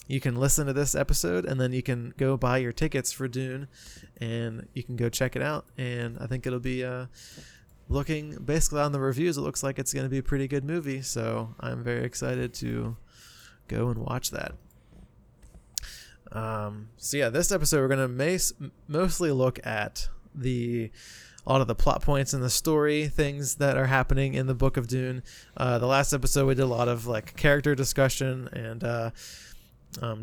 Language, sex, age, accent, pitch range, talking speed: English, male, 20-39, American, 120-135 Hz, 195 wpm